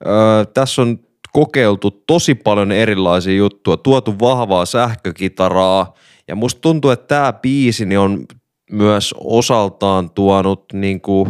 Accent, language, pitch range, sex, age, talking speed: native, Finnish, 95-115 Hz, male, 20-39, 115 wpm